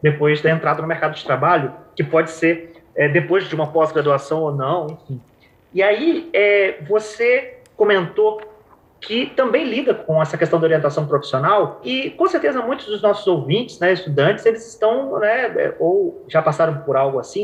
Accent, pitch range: Brazilian, 165-245 Hz